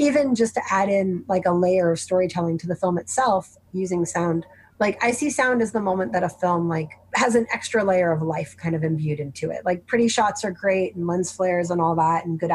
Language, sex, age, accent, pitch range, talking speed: English, female, 30-49, American, 170-220 Hz, 245 wpm